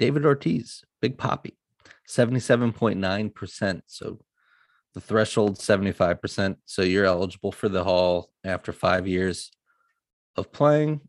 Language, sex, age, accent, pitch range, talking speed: English, male, 30-49, American, 90-105 Hz, 110 wpm